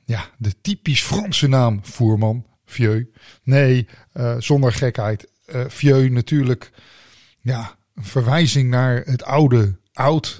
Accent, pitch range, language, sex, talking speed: Dutch, 115-150 Hz, Dutch, male, 120 wpm